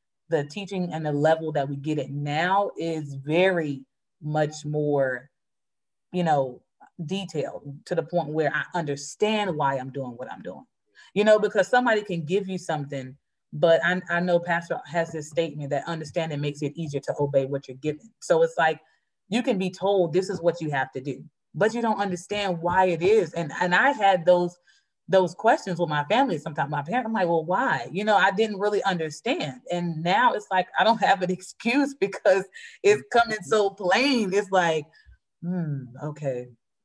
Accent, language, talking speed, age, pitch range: American, English, 190 wpm, 30-49, 150-195 Hz